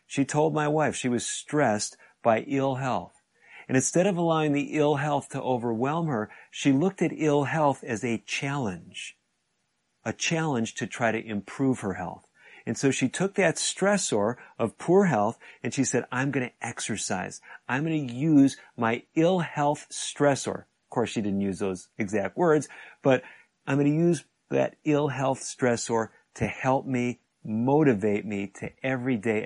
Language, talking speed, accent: English, 170 wpm, American